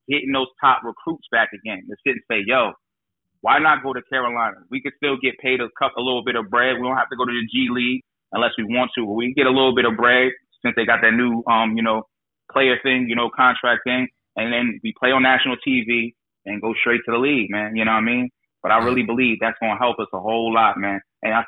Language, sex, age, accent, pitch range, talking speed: English, male, 30-49, American, 115-145 Hz, 275 wpm